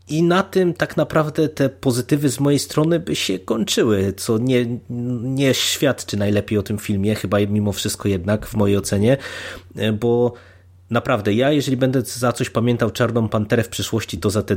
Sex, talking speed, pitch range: male, 175 wpm, 100-120 Hz